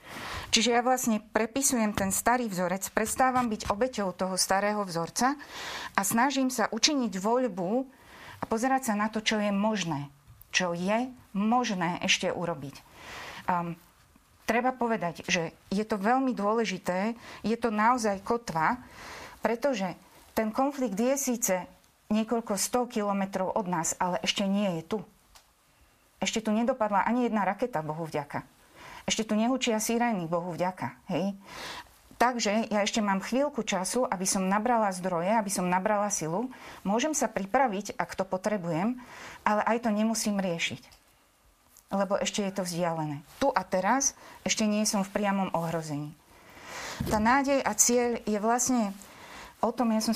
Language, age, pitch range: Slovak, 30-49, 185-235 Hz